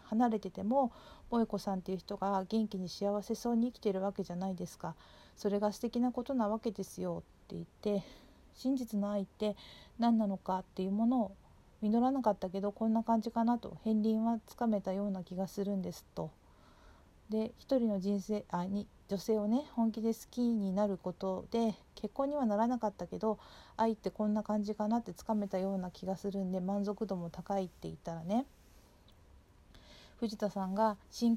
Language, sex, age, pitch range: Japanese, female, 40-59, 190-230 Hz